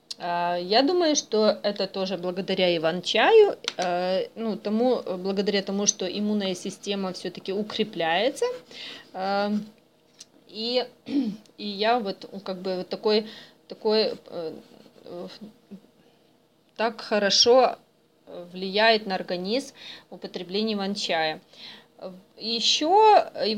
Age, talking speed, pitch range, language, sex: 20-39, 85 wpm, 190-250 Hz, Russian, female